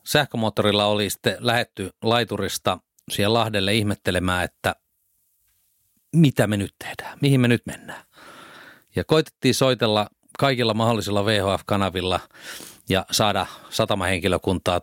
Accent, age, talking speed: native, 30-49, 105 wpm